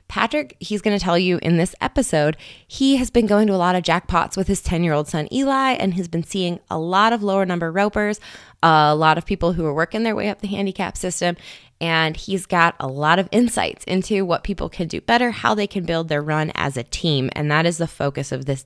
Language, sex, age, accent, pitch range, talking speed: English, female, 20-39, American, 140-185 Hz, 240 wpm